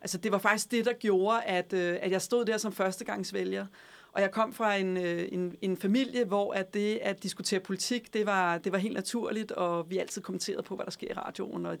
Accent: native